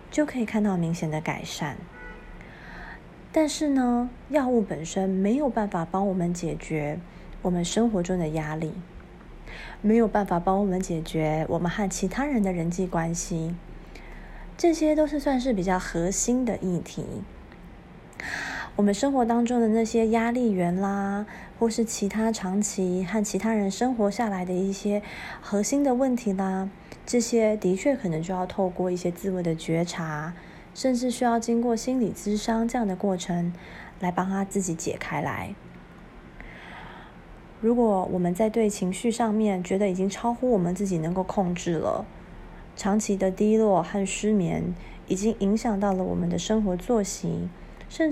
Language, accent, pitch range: Chinese, native, 180-225 Hz